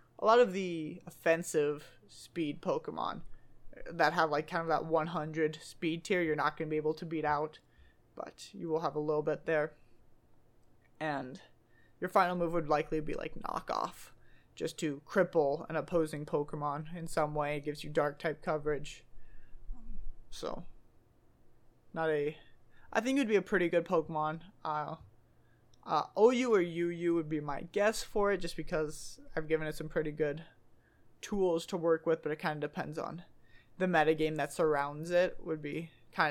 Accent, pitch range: American, 150-170 Hz